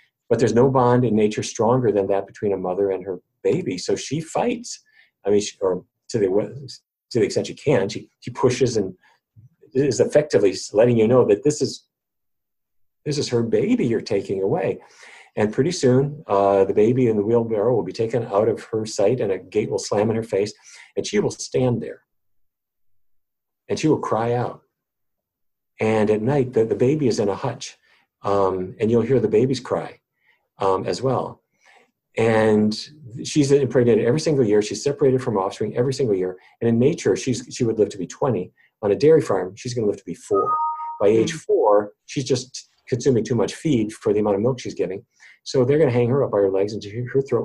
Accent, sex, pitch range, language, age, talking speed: American, male, 100-135 Hz, English, 40-59, 210 wpm